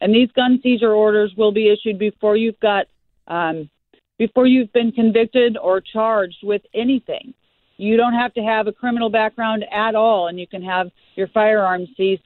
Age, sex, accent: 40-59, female, American